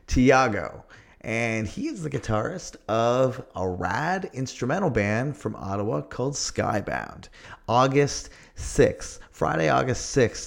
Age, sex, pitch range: 30-49, male, 105-135 Hz